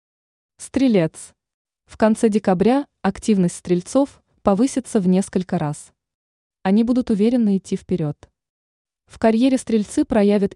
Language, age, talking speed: Russian, 20-39, 110 wpm